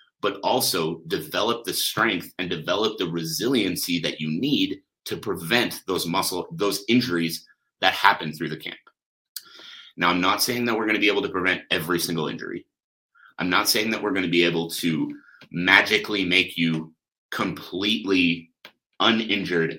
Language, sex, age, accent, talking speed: English, male, 30-49, American, 160 wpm